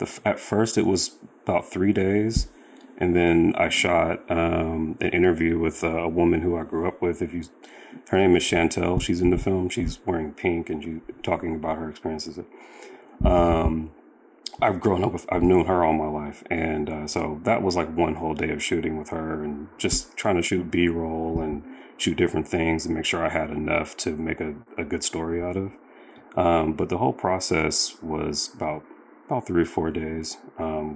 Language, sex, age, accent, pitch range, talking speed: English, male, 30-49, American, 80-90 Hz, 200 wpm